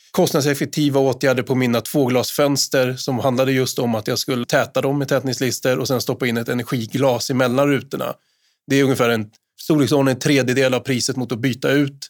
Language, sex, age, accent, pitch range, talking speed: Swedish, male, 20-39, native, 120-140 Hz, 185 wpm